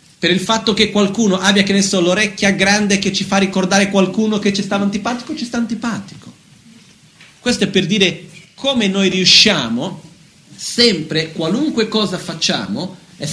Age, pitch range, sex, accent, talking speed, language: 40-59, 170-215 Hz, male, native, 160 wpm, Italian